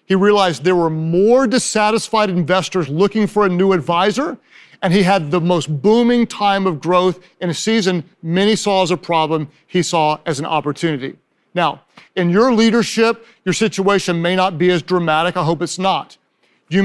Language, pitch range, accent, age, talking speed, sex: English, 175-200 Hz, American, 40-59, 180 wpm, male